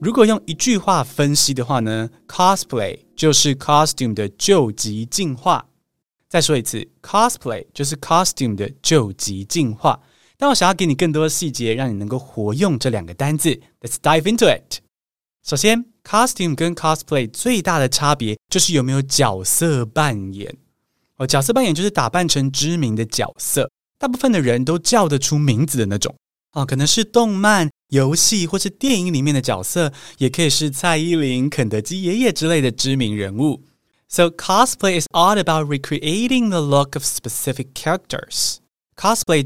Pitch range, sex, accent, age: 125-175 Hz, male, native, 20-39